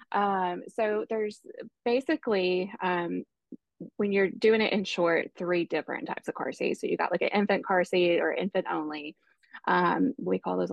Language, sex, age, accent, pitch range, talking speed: English, female, 20-39, American, 175-205 Hz, 180 wpm